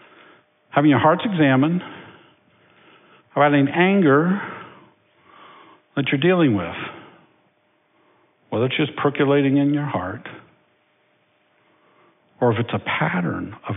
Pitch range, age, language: 120-180 Hz, 50-69, English